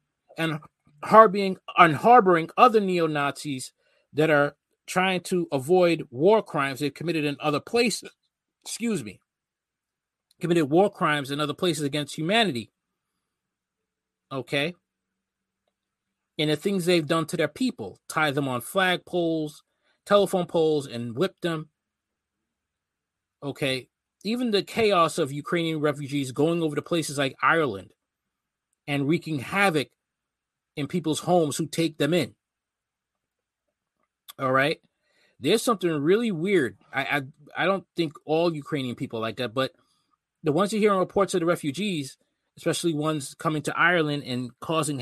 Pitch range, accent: 145-185 Hz, American